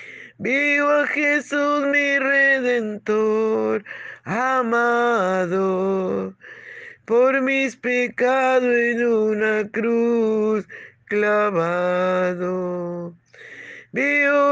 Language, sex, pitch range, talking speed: Spanish, male, 180-240 Hz, 60 wpm